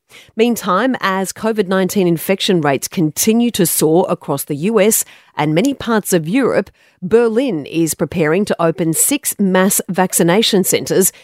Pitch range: 160-215 Hz